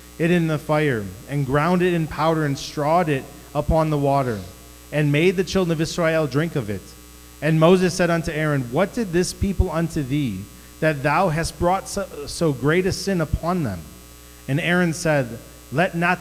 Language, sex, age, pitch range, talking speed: English, male, 30-49, 140-170 Hz, 190 wpm